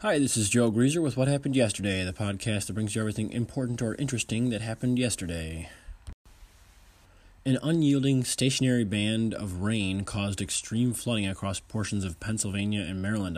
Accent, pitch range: American, 95-115 Hz